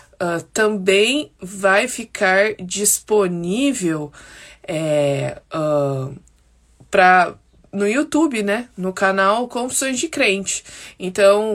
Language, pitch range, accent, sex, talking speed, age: Portuguese, 190-225 Hz, Brazilian, female, 90 wpm, 20-39